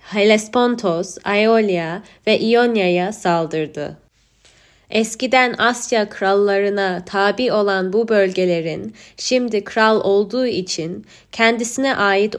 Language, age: Turkish, 20-39